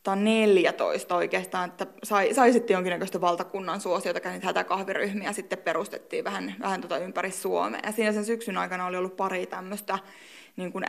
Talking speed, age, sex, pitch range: 170 wpm, 20-39, female, 180-215 Hz